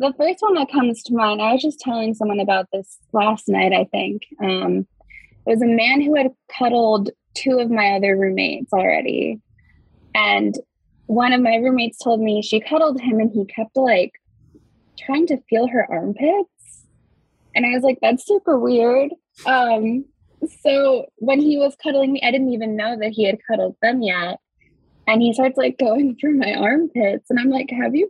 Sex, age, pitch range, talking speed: female, 10-29, 210-270 Hz, 190 wpm